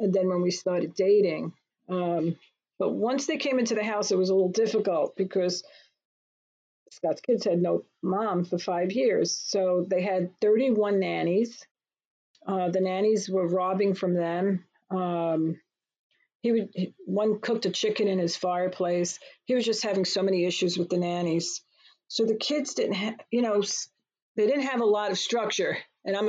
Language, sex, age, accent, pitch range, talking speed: English, female, 50-69, American, 185-225 Hz, 175 wpm